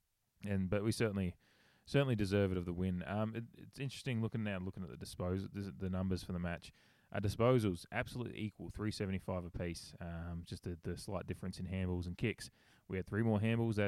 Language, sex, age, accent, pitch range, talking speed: English, male, 20-39, Australian, 90-105 Hz, 210 wpm